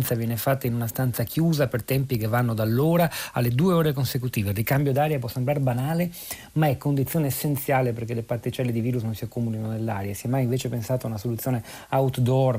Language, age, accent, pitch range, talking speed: Italian, 40-59, native, 120-150 Hz, 205 wpm